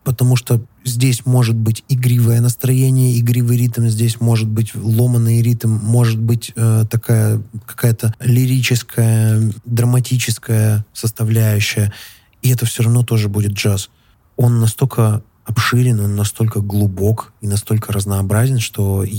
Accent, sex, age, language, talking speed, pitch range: native, male, 20-39, Russian, 120 wpm, 110-120 Hz